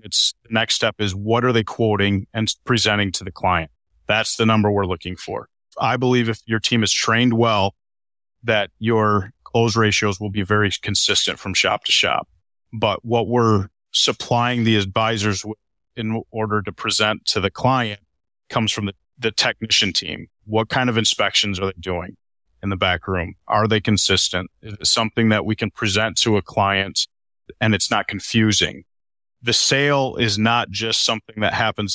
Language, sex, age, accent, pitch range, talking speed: English, male, 30-49, American, 100-115 Hz, 180 wpm